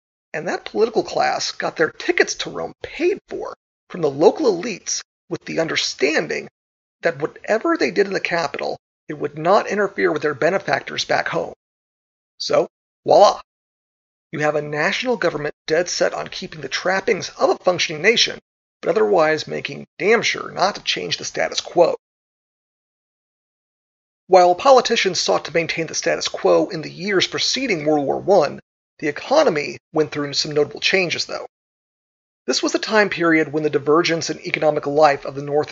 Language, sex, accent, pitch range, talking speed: English, male, American, 150-235 Hz, 165 wpm